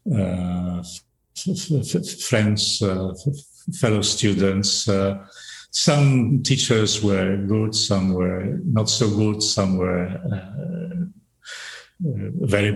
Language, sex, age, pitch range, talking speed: English, male, 50-69, 105-160 Hz, 105 wpm